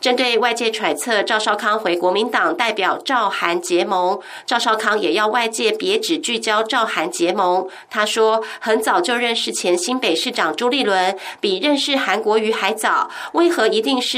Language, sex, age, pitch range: Russian, female, 30-49, 200-255 Hz